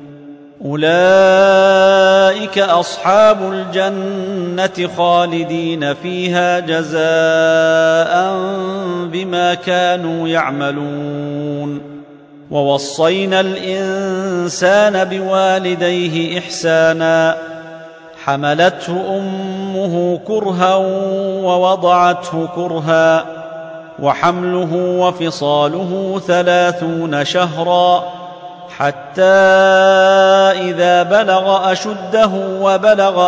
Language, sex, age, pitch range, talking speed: Arabic, male, 40-59, 165-185 Hz, 50 wpm